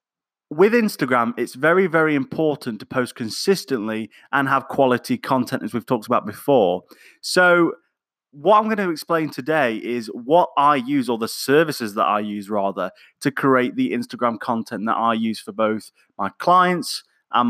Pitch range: 120-165 Hz